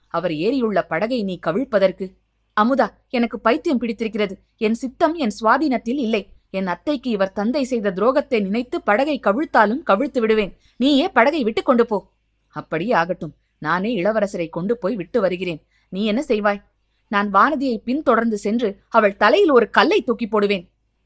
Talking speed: 145 wpm